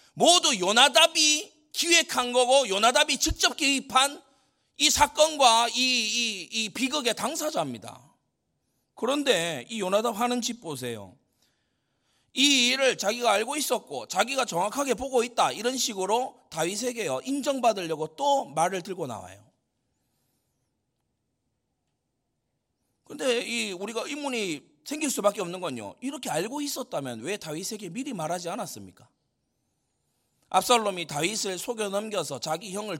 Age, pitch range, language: 40-59, 175-260 Hz, Korean